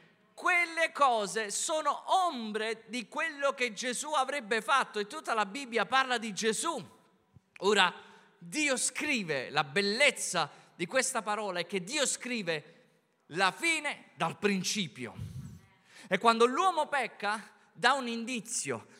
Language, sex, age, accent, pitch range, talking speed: Italian, male, 30-49, native, 200-255 Hz, 125 wpm